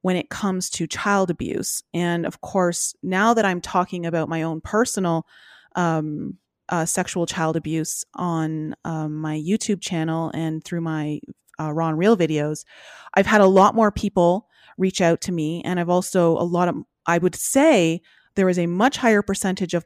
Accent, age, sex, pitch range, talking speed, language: American, 30-49, female, 165-195 Hz, 185 wpm, English